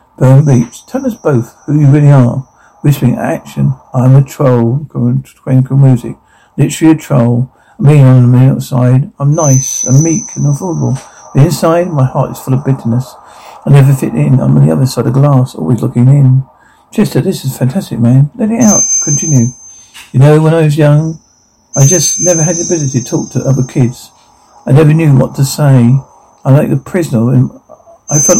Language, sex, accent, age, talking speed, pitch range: English, male, British, 50-69, 195 wpm, 125-150 Hz